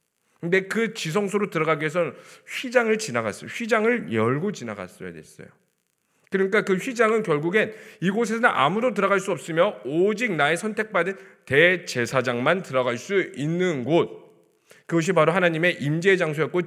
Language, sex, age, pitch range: Korean, male, 40-59, 170-230 Hz